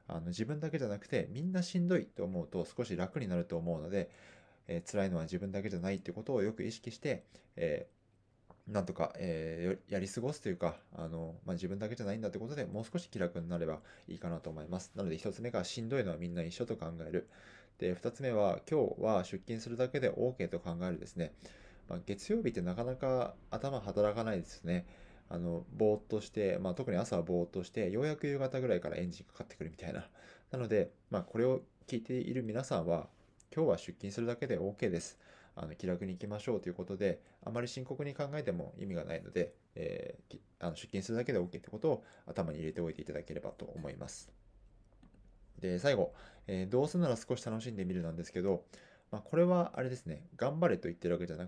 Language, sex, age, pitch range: Japanese, male, 20-39, 85-125 Hz